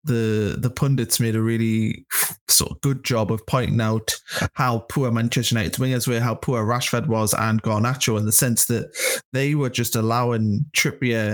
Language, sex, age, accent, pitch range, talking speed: English, male, 20-39, British, 115-140 Hz, 180 wpm